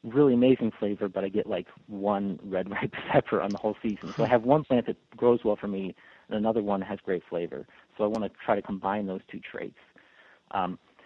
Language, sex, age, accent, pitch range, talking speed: English, male, 40-59, American, 105-120 Hz, 230 wpm